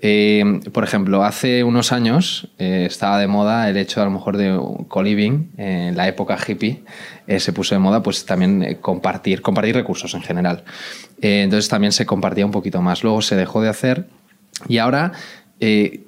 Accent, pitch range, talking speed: Spanish, 100-130 Hz, 190 wpm